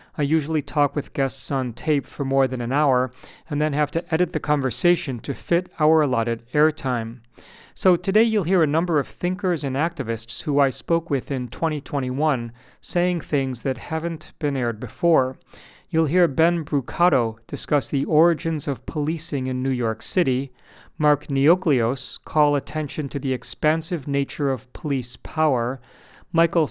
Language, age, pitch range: English, 40-59, 130-160 Hz